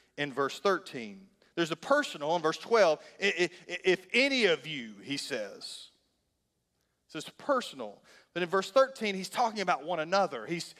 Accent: American